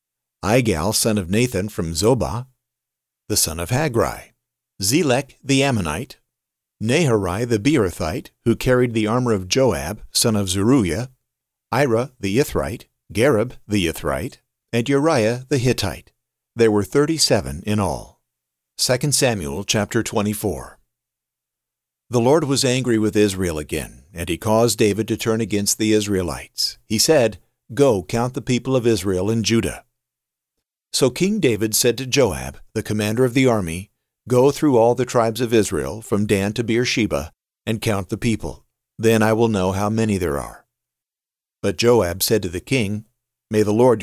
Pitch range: 95-125 Hz